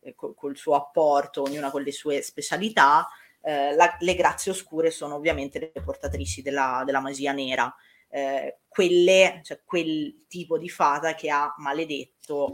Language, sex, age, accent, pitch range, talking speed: Italian, female, 30-49, native, 140-175 Hz, 150 wpm